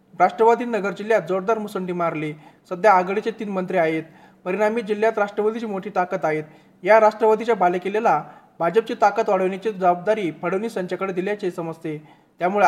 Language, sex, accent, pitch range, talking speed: Marathi, male, native, 180-220 Hz, 135 wpm